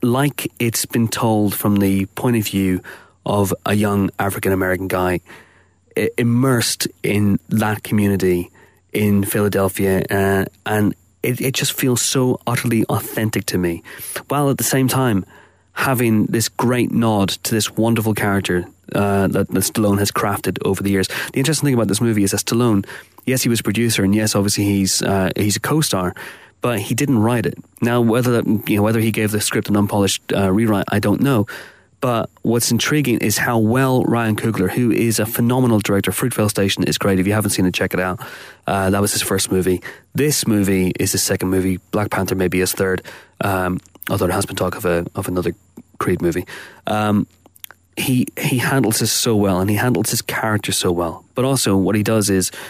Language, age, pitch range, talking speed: English, 30-49, 95-115 Hz, 195 wpm